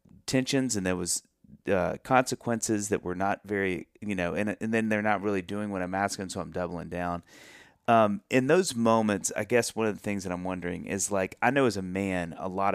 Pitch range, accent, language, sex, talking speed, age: 90-115 Hz, American, English, male, 225 wpm, 30-49